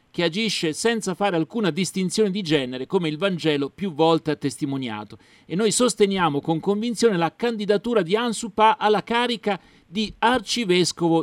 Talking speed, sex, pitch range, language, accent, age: 150 wpm, male, 145-215 Hz, Italian, native, 40-59